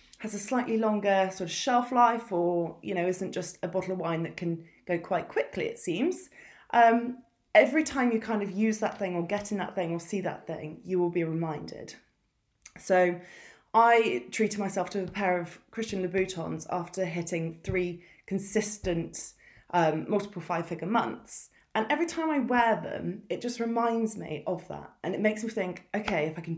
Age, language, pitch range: 20-39, English, 175-230 Hz